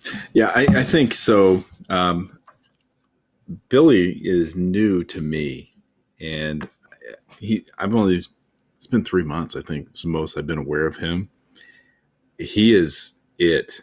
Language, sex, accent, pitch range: English, male, American, 80-95 Hz